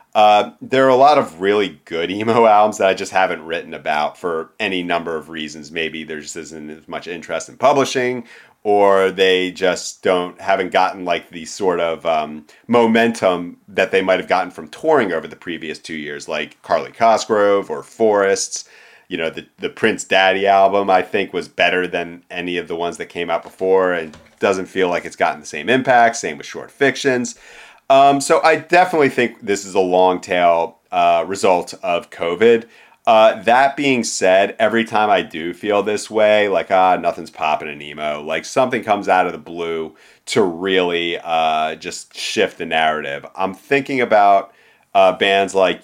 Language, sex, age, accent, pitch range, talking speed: English, male, 40-59, American, 85-105 Hz, 185 wpm